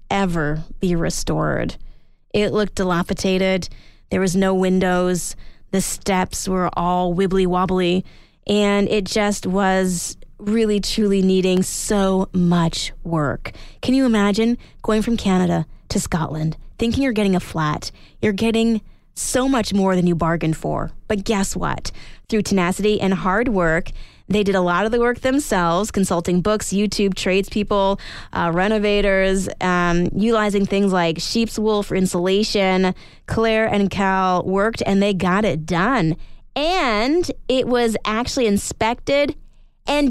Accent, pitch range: American, 185-220 Hz